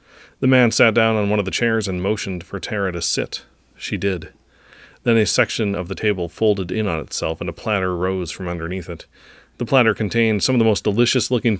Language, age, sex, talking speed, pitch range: English, 30-49, male, 215 wpm, 80-110 Hz